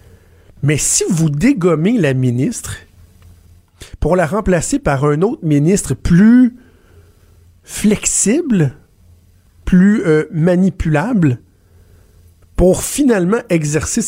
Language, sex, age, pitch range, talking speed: French, male, 50-69, 100-160 Hz, 90 wpm